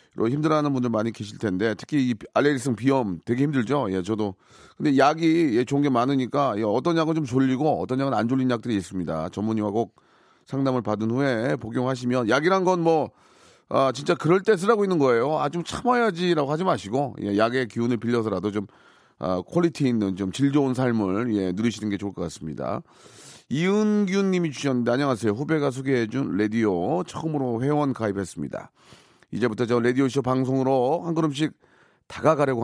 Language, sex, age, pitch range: Korean, male, 30-49, 110-155 Hz